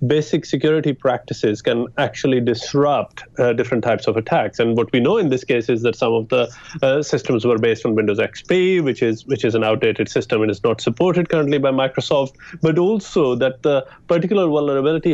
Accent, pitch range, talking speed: Indian, 125-160 Hz, 200 wpm